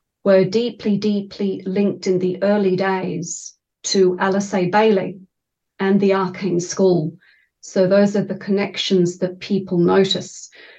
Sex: female